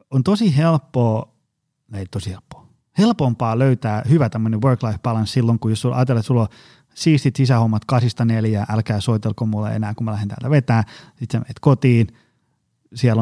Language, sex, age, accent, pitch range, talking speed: Finnish, male, 30-49, native, 115-140 Hz, 165 wpm